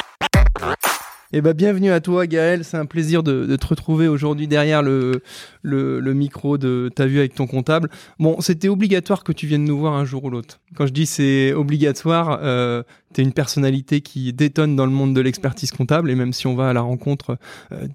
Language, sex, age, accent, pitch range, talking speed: French, male, 20-39, French, 130-155 Hz, 210 wpm